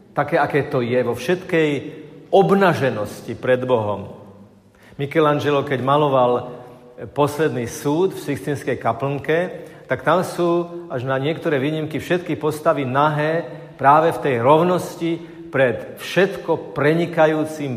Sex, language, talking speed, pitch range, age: male, Slovak, 115 wpm, 125-155 Hz, 40-59